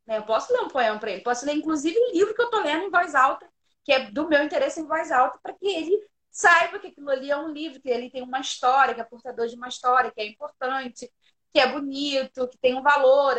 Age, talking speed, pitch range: 20-39, 270 wpm, 240-330 Hz